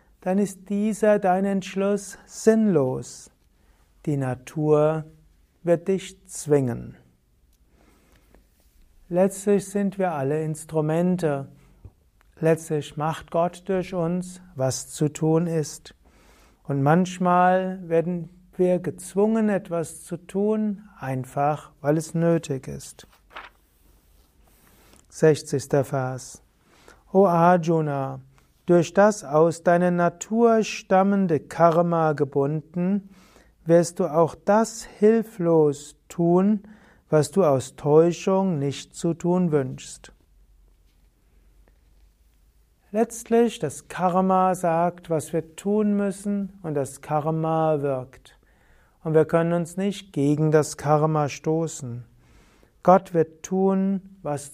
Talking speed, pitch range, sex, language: 100 wpm, 140-185 Hz, male, German